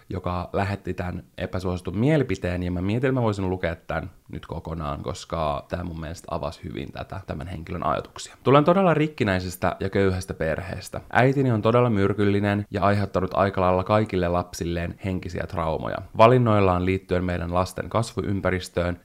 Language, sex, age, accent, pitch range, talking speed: Finnish, male, 20-39, native, 90-110 Hz, 145 wpm